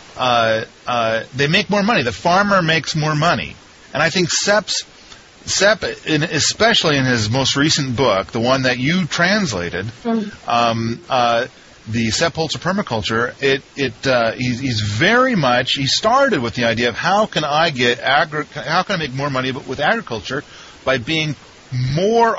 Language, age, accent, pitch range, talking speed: English, 40-59, American, 125-170 Hz, 165 wpm